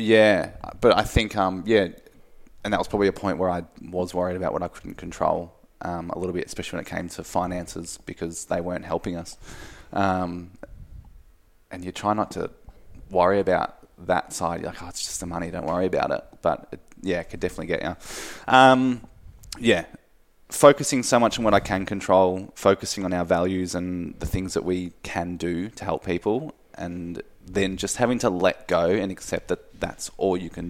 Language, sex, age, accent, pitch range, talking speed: English, male, 20-39, Australian, 85-95 Hz, 195 wpm